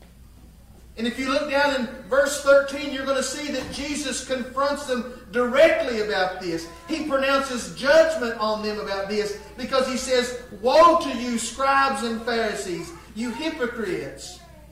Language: English